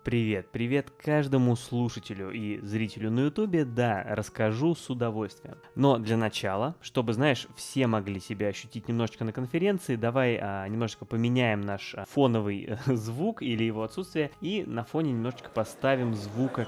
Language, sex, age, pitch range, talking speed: Russian, male, 20-39, 110-135 Hz, 140 wpm